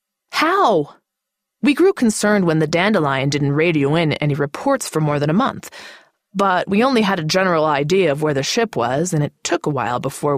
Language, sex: English, female